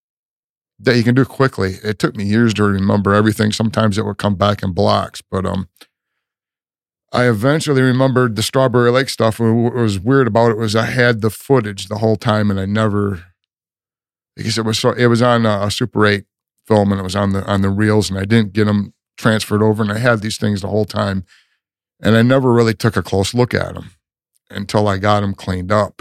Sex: male